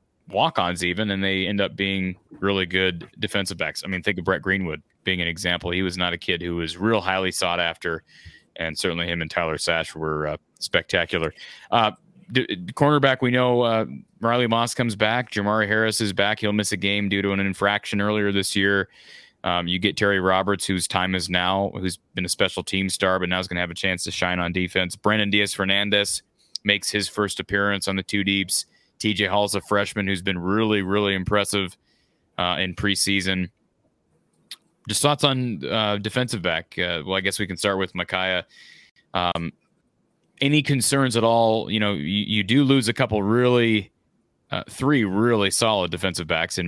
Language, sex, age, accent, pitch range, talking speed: English, male, 30-49, American, 90-105 Hz, 195 wpm